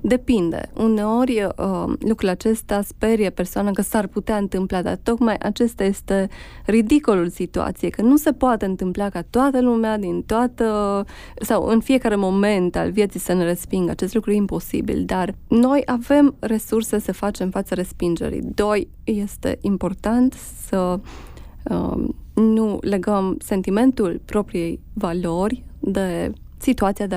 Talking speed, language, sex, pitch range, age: 135 wpm, Romanian, female, 190-235 Hz, 20-39